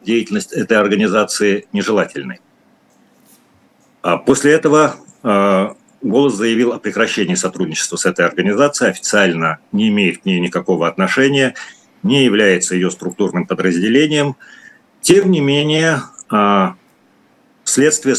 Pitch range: 100-145 Hz